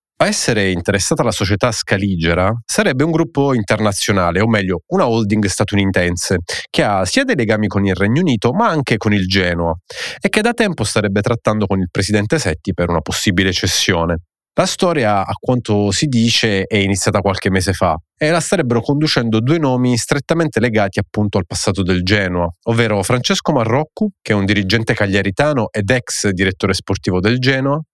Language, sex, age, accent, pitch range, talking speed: Italian, male, 30-49, native, 95-125 Hz, 175 wpm